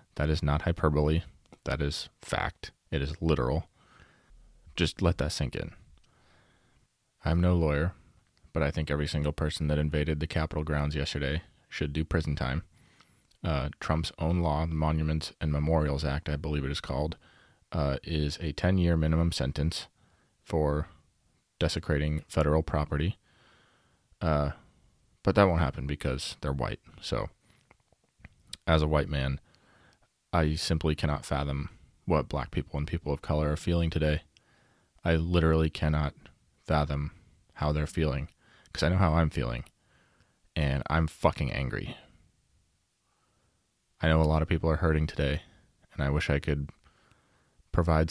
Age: 20-39